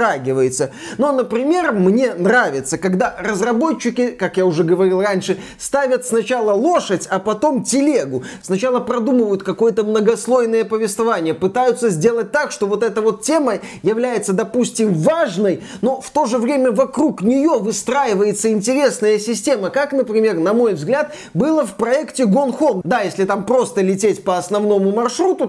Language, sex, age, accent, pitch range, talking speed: Russian, male, 20-39, native, 200-260 Hz, 140 wpm